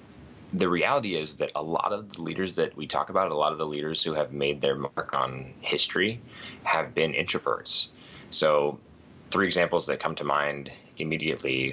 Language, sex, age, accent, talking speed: English, male, 20-39, American, 185 wpm